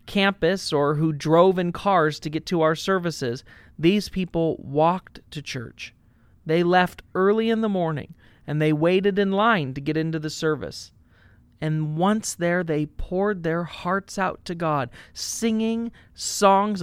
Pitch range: 155-205 Hz